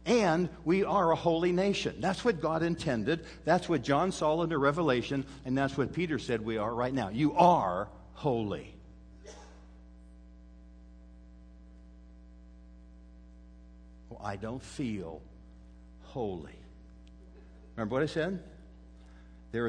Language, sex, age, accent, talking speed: English, male, 60-79, American, 120 wpm